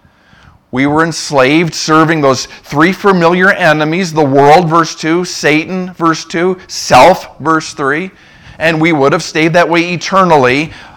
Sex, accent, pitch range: male, American, 130-185 Hz